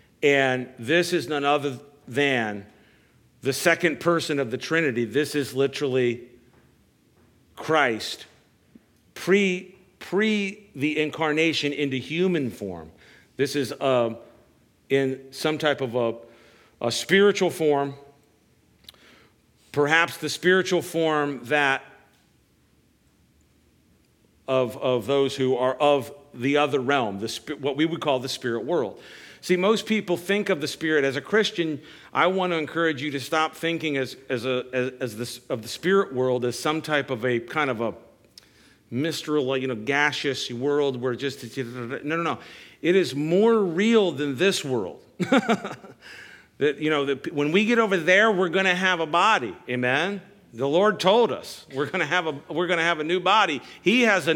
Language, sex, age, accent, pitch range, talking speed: English, male, 50-69, American, 130-170 Hz, 160 wpm